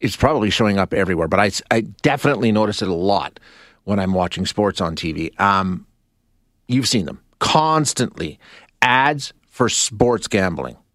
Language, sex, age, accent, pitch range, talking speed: English, male, 40-59, American, 110-150 Hz, 155 wpm